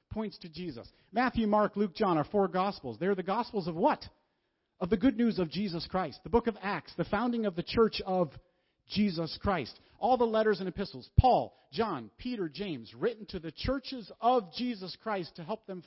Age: 40-59